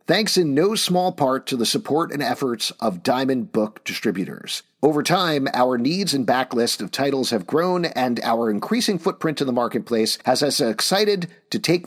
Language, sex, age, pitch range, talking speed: English, male, 50-69, 120-175 Hz, 180 wpm